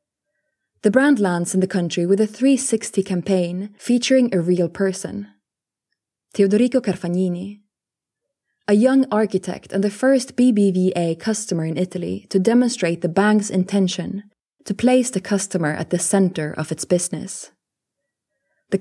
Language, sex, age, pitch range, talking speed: English, female, 20-39, 180-215 Hz, 135 wpm